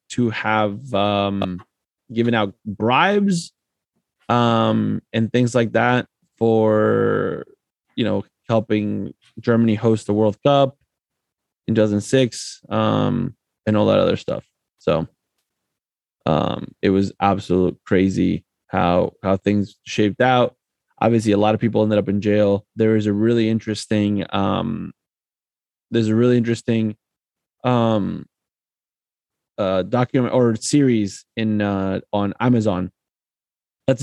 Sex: male